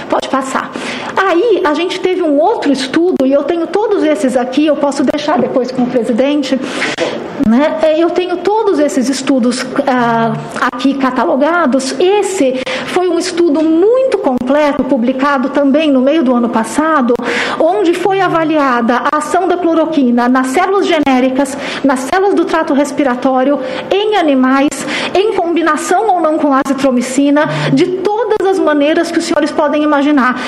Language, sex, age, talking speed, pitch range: Portuguese, female, 50-69, 150 wpm, 265-325 Hz